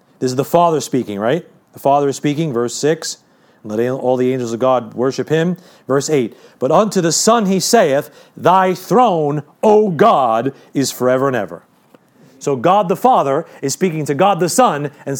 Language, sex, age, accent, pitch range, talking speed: English, male, 40-59, American, 125-190 Hz, 185 wpm